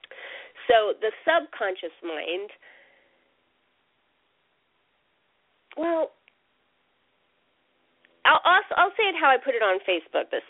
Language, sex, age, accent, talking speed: English, female, 30-49, American, 90 wpm